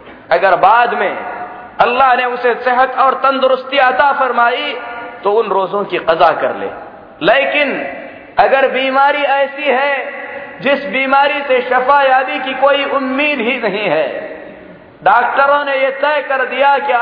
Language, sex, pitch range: Hindi, male, 200-275 Hz